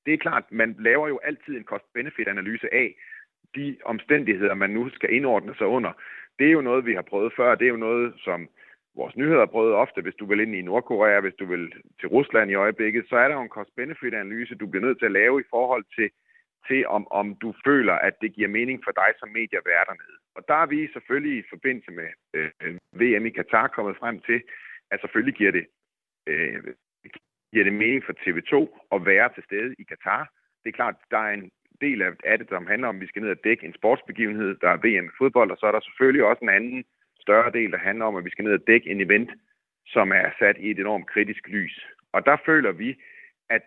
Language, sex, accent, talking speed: Danish, male, native, 230 wpm